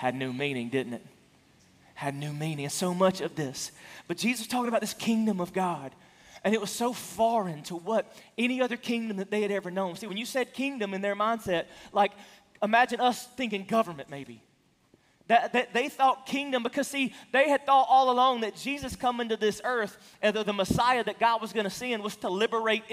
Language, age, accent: English, 30-49, American